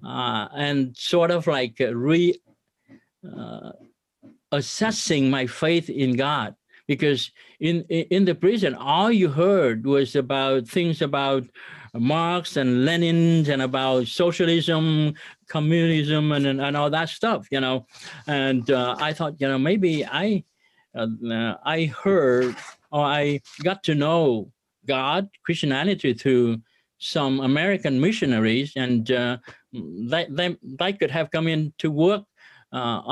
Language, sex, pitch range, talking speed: English, male, 130-170 Hz, 130 wpm